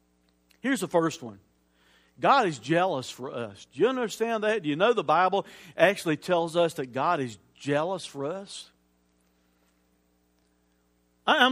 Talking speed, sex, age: 145 wpm, male, 50-69